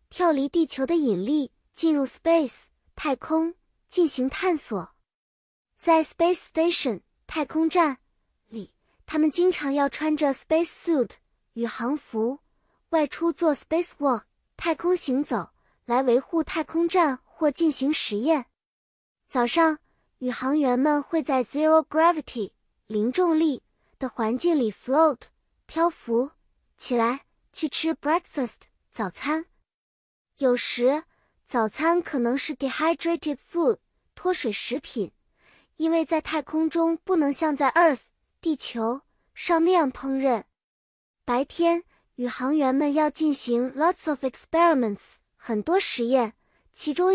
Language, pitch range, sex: Chinese, 260-325 Hz, male